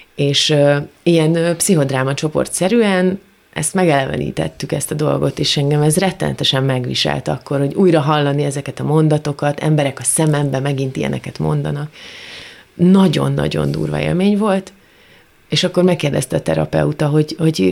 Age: 30-49